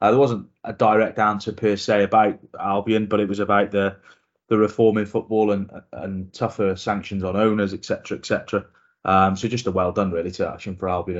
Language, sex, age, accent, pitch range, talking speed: English, male, 20-39, British, 95-120 Hz, 215 wpm